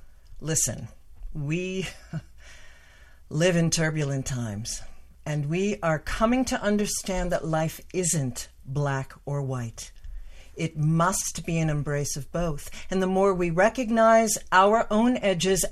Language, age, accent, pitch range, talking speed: English, 50-69, American, 130-180 Hz, 125 wpm